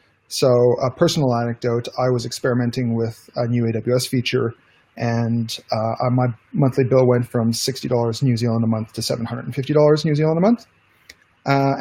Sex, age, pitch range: male, 30-49, 120-145 Hz